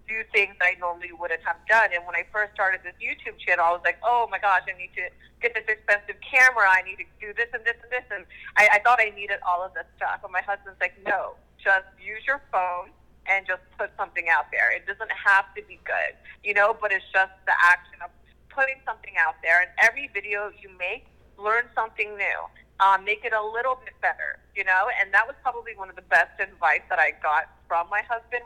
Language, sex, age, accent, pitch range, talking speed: English, female, 30-49, American, 185-230 Hz, 240 wpm